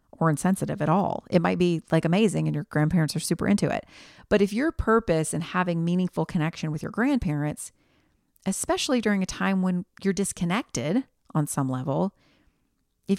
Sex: female